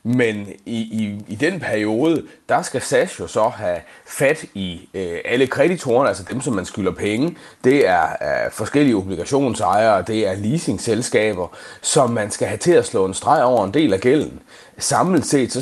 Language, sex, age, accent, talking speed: Danish, male, 30-49, native, 175 wpm